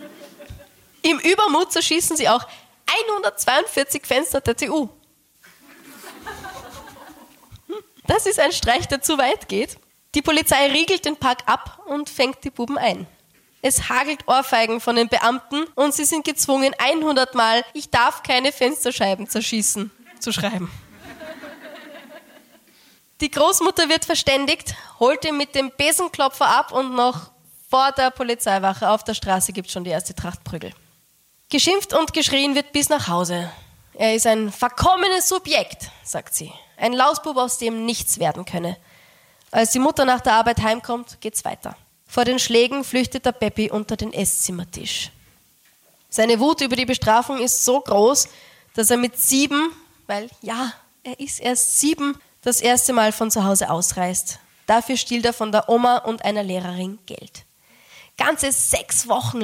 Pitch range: 225-300 Hz